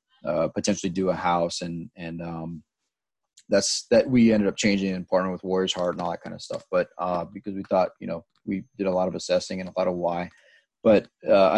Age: 30-49